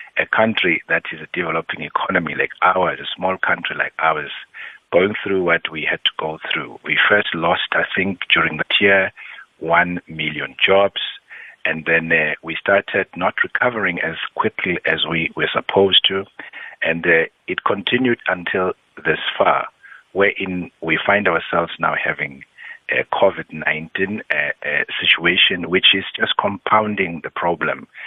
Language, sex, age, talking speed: English, male, 60-79, 150 wpm